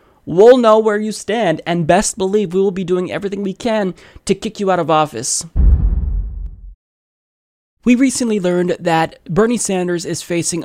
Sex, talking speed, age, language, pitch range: male, 165 wpm, 20-39, English, 155-195 Hz